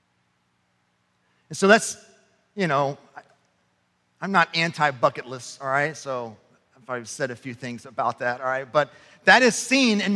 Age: 40-59